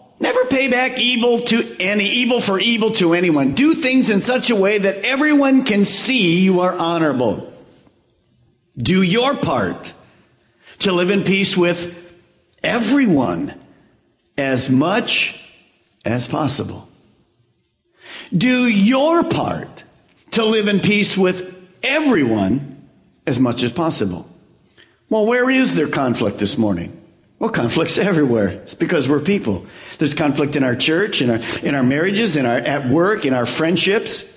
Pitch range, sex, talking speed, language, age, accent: 165-245 Hz, male, 140 wpm, English, 50-69, American